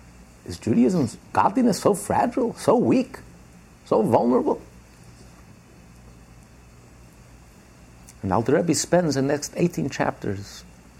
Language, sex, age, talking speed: English, male, 50-69, 85 wpm